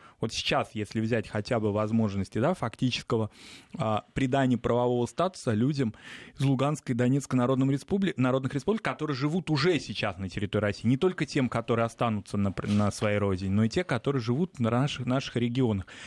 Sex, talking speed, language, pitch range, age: male, 180 wpm, Russian, 110-140 Hz, 20-39